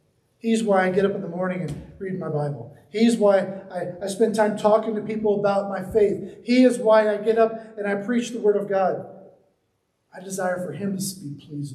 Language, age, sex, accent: English, 40-59, male, American